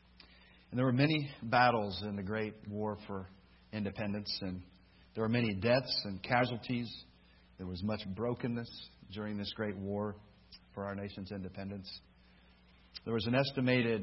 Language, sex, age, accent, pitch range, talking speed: English, male, 50-69, American, 95-110 Hz, 145 wpm